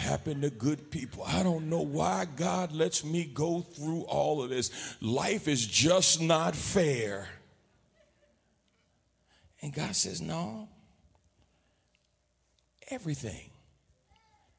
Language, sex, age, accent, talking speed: English, male, 50-69, American, 105 wpm